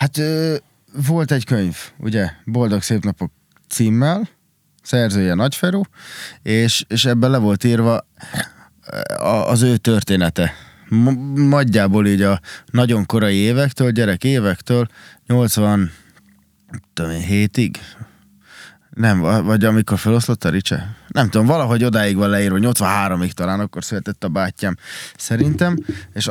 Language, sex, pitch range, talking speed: Hungarian, male, 100-125 Hz, 115 wpm